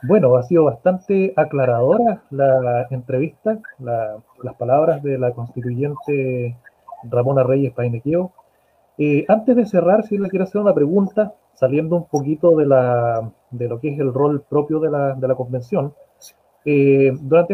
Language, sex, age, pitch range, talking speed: Spanish, male, 30-49, 135-180 Hz, 140 wpm